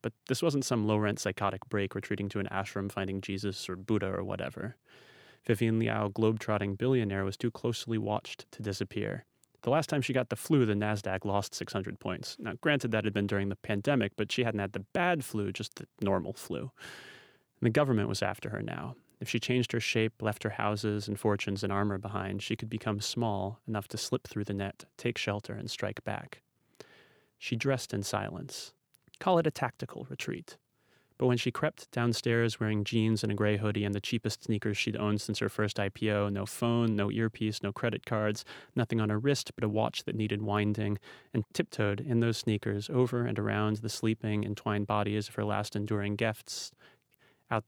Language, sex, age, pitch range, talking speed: English, male, 30-49, 105-120 Hz, 200 wpm